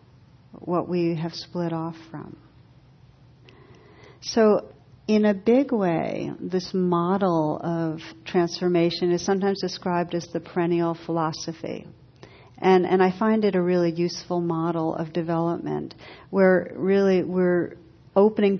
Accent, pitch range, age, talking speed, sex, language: American, 165-185 Hz, 60-79, 120 wpm, female, English